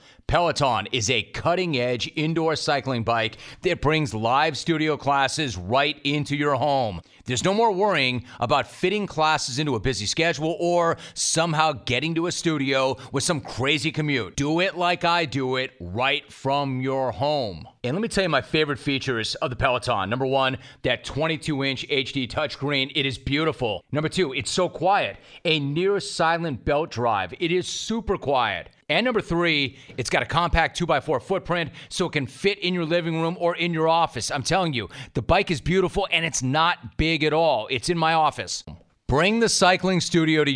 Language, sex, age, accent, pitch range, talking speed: English, male, 30-49, American, 130-165 Hz, 185 wpm